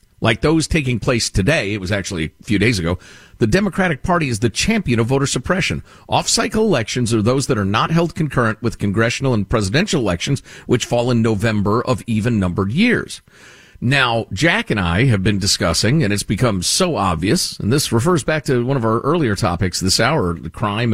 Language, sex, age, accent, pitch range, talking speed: English, male, 50-69, American, 100-160 Hz, 195 wpm